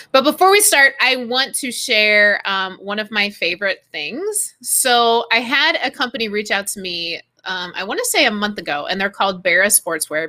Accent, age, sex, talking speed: American, 20-39, female, 210 wpm